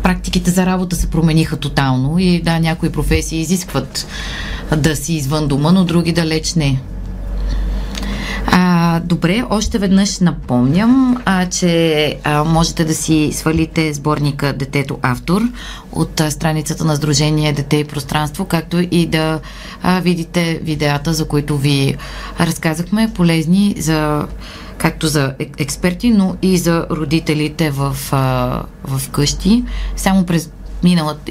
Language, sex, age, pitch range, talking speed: Bulgarian, female, 30-49, 150-175 Hz, 130 wpm